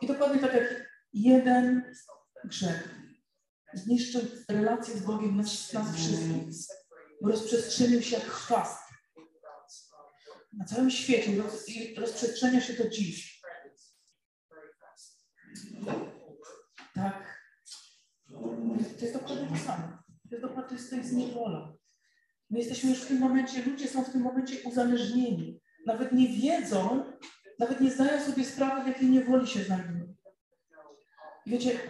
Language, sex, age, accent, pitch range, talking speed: Polish, female, 40-59, native, 225-260 Hz, 115 wpm